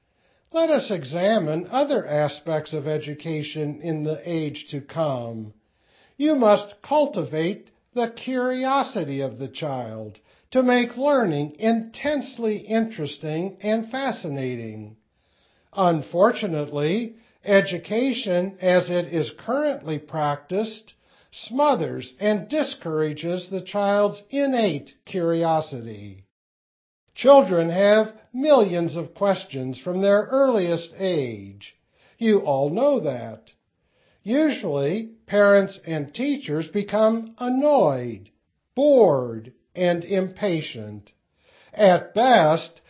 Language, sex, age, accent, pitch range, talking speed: English, male, 60-79, American, 150-230 Hz, 90 wpm